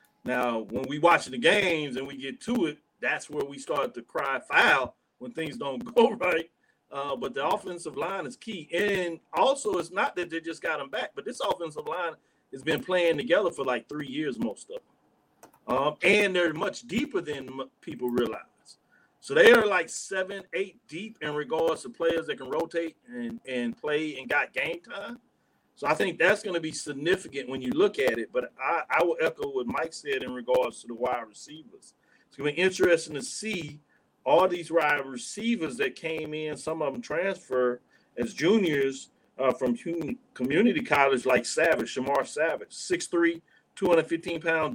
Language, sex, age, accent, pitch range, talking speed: English, male, 40-59, American, 145-205 Hz, 190 wpm